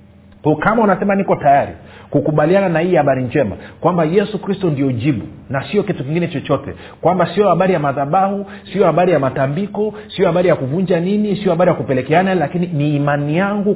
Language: Swahili